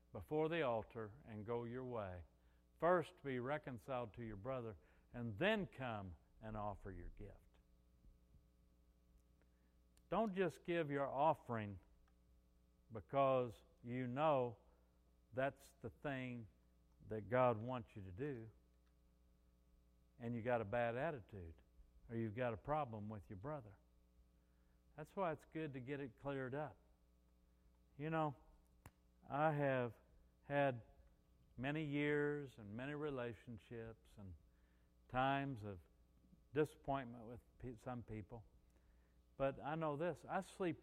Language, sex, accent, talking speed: English, male, American, 125 wpm